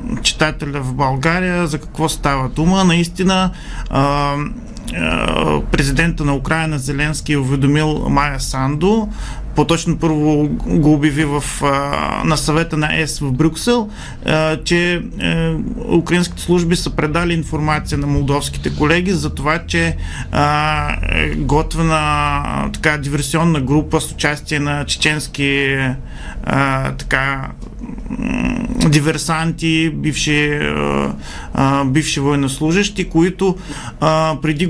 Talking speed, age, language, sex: 90 wpm, 40-59, Bulgarian, male